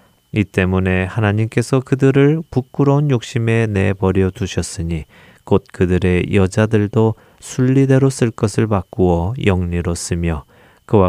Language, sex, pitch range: Korean, male, 90-115 Hz